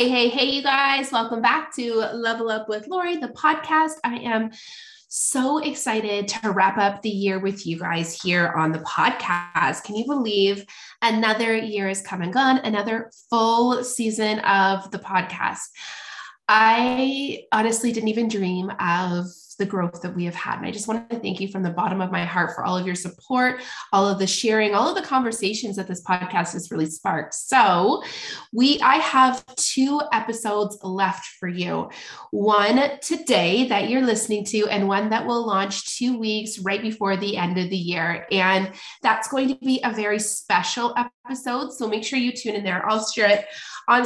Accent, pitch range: American, 190-245 Hz